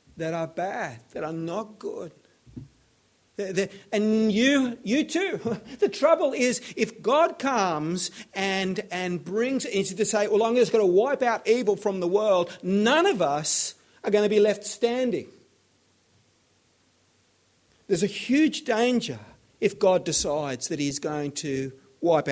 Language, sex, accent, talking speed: English, male, Australian, 155 wpm